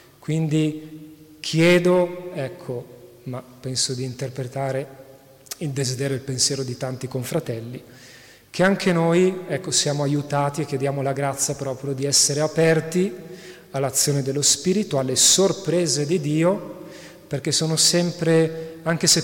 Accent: native